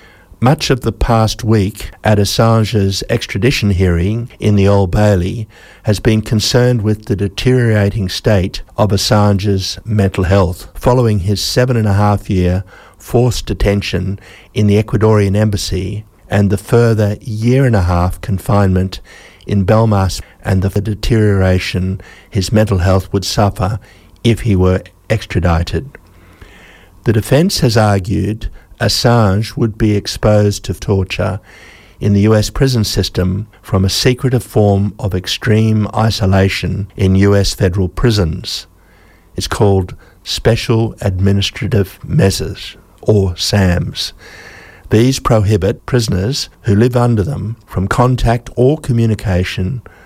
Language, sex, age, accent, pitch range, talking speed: English, male, 60-79, Australian, 95-110 Hz, 125 wpm